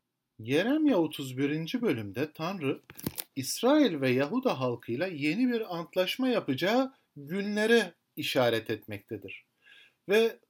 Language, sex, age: Turkish, male, 50-69